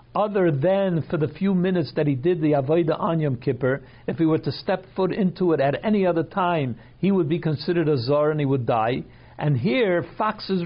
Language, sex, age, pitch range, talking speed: English, male, 60-79, 145-185 Hz, 215 wpm